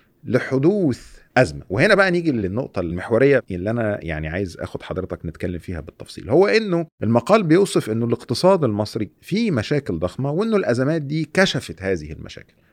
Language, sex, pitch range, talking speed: Arabic, male, 105-155 Hz, 150 wpm